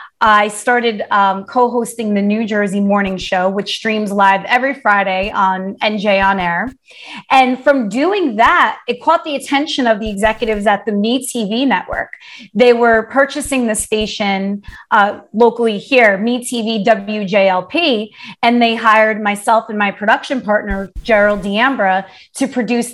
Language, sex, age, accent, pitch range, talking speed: English, female, 30-49, American, 210-255 Hz, 145 wpm